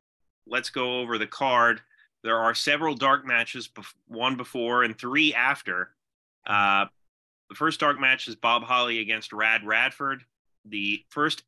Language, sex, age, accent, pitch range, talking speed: English, male, 30-49, American, 100-130 Hz, 145 wpm